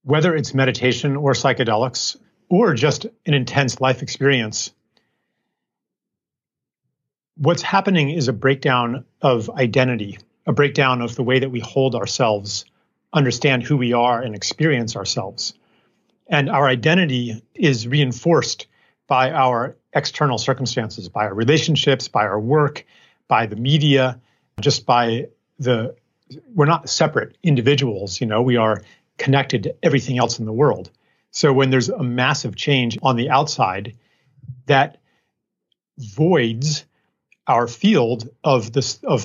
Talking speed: 130 wpm